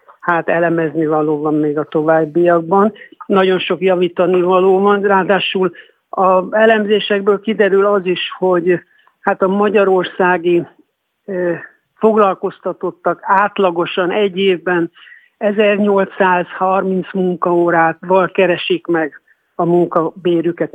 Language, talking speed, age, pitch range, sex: Hungarian, 95 wpm, 60-79, 170-195 Hz, male